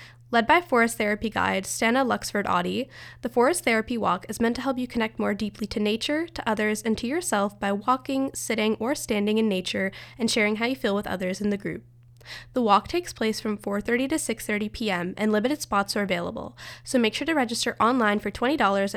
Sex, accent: female, American